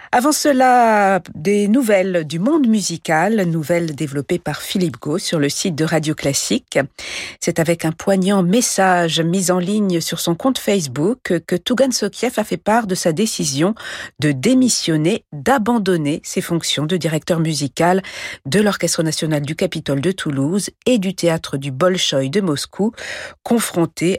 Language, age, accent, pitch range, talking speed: French, 50-69, French, 155-205 Hz, 155 wpm